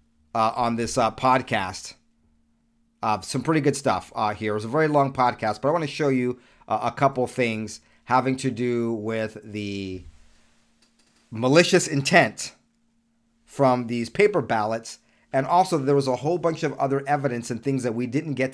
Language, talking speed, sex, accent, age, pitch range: English, 180 wpm, male, American, 40-59, 105-140 Hz